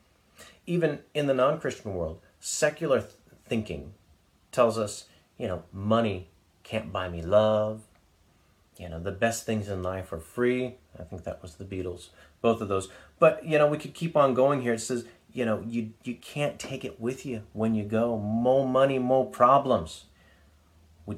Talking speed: 175 wpm